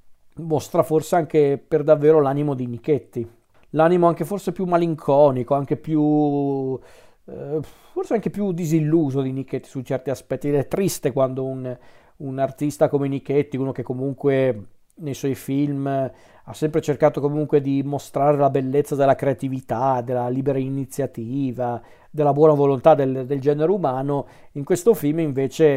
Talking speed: 150 wpm